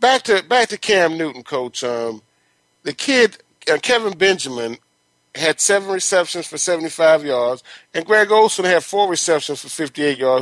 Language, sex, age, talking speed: English, male, 40-59, 160 wpm